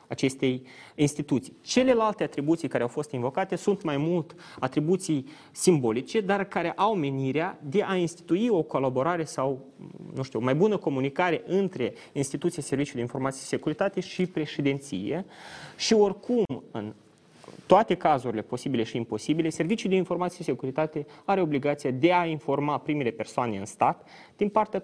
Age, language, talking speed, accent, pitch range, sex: 20-39, Romanian, 150 wpm, native, 125-175 Hz, male